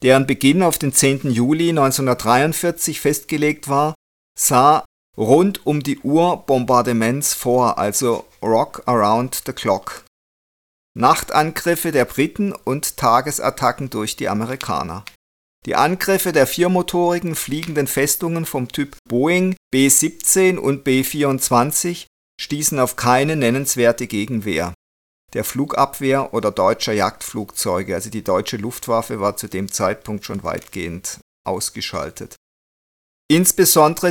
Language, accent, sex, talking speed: German, German, male, 110 wpm